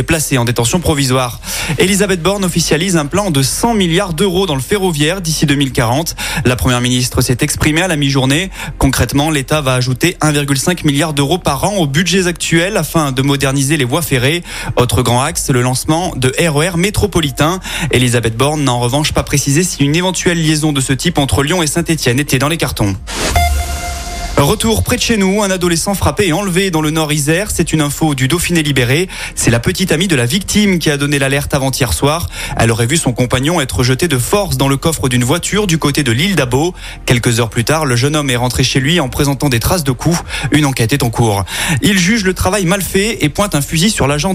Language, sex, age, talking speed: French, male, 20-39, 220 wpm